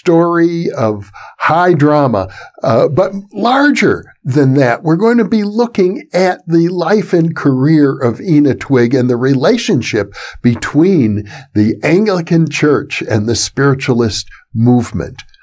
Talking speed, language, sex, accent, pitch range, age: 130 wpm, English, male, American, 115-175 Hz, 60-79